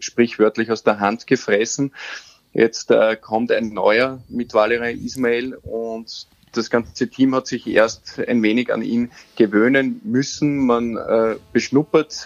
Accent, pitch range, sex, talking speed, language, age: Austrian, 110-135 Hz, male, 140 wpm, German, 20-39